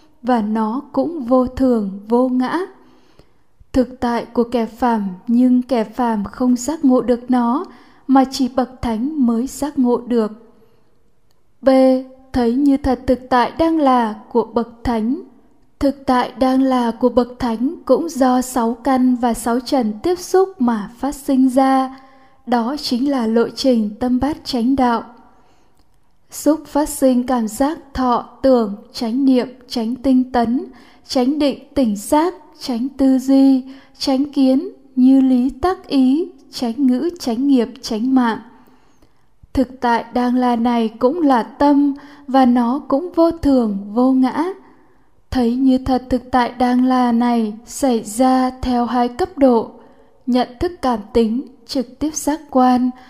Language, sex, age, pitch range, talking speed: Vietnamese, female, 10-29, 240-270 Hz, 155 wpm